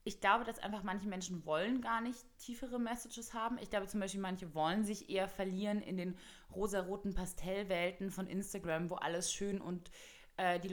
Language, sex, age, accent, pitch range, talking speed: German, female, 20-39, German, 185-230 Hz, 185 wpm